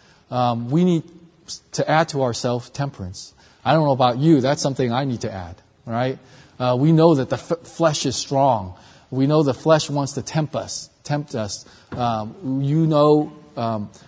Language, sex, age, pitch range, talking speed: English, male, 40-59, 120-150 Hz, 185 wpm